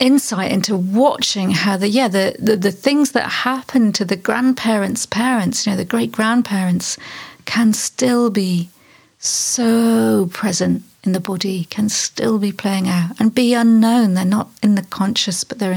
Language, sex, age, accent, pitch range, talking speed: English, female, 40-59, British, 190-220 Hz, 170 wpm